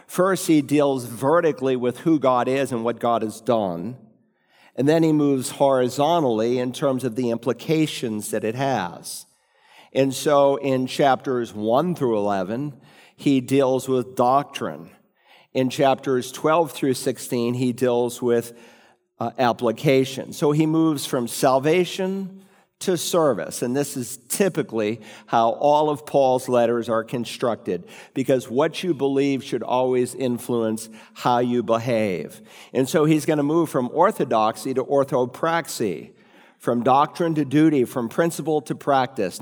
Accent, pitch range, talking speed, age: American, 115-145 Hz, 140 wpm, 50-69